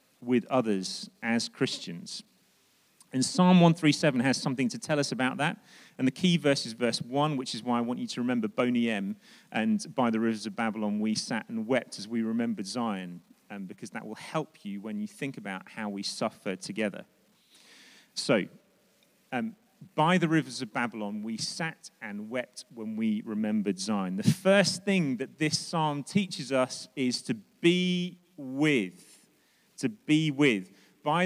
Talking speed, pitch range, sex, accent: 170 wpm, 125-190 Hz, male, British